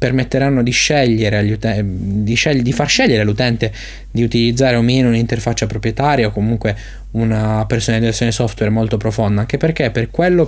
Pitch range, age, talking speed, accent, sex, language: 110-130 Hz, 20-39, 160 wpm, native, male, Italian